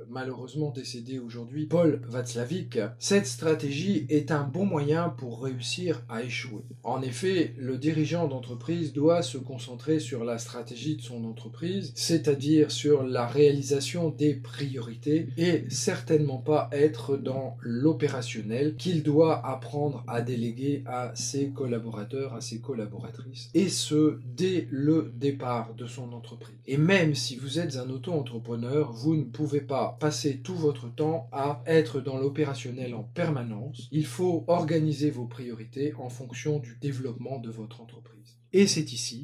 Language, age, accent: French, 40-59, French